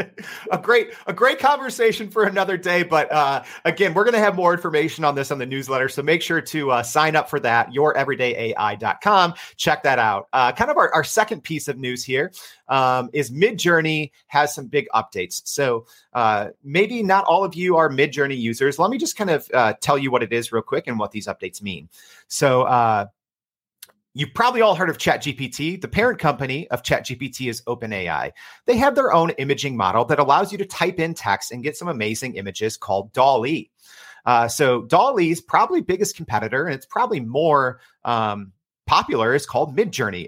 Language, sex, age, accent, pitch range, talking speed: English, male, 30-49, American, 125-185 Hz, 195 wpm